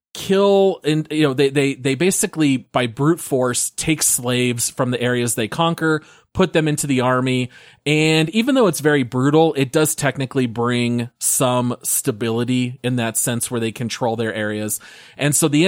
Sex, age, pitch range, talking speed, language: male, 30-49, 120-155 Hz, 175 wpm, English